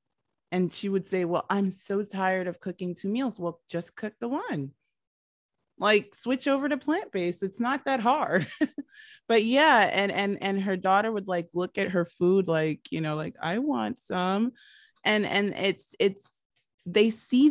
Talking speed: 180 wpm